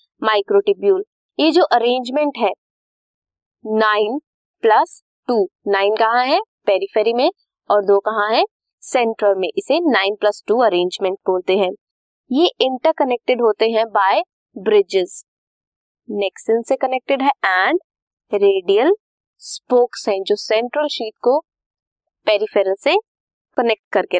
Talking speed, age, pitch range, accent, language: 120 wpm, 20-39, 210-305 Hz, native, Hindi